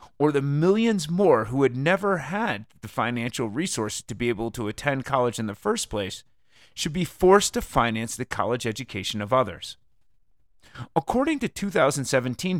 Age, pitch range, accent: 30-49, 115-160 Hz, American